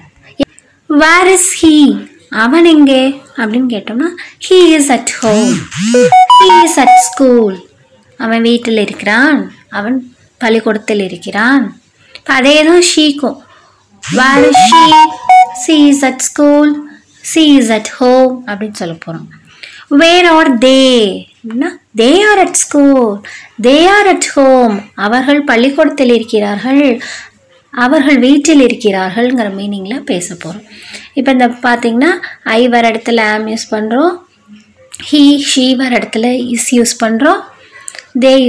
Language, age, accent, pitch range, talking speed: English, 20-39, Indian, 225-285 Hz, 110 wpm